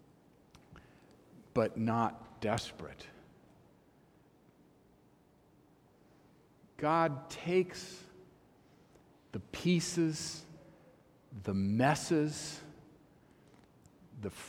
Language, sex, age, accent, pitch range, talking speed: English, male, 50-69, American, 110-150 Hz, 40 wpm